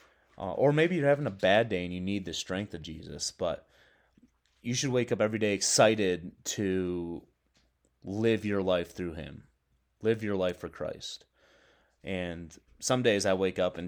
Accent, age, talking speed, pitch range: American, 30-49, 175 wpm, 85-105 Hz